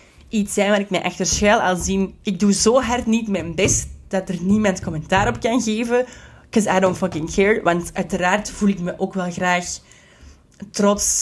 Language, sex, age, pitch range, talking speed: Dutch, female, 30-49, 175-210 Hz, 200 wpm